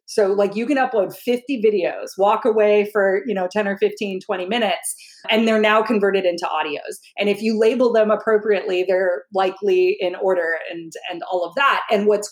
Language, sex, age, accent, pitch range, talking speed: English, female, 30-49, American, 185-230 Hz, 195 wpm